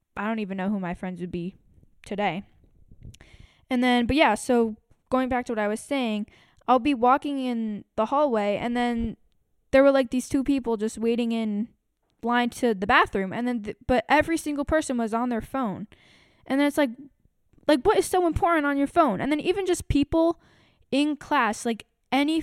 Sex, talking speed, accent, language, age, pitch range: female, 200 wpm, American, English, 10-29, 215-280 Hz